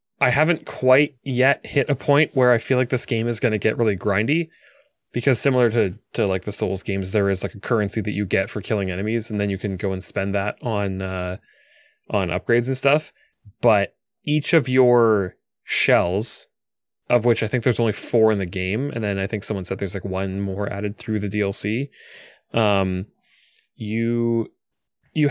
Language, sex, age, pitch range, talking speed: English, male, 20-39, 100-125 Hz, 195 wpm